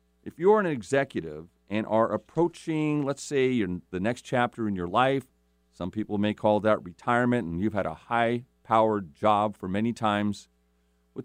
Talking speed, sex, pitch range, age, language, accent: 165 wpm, male, 85-120 Hz, 40-59, English, American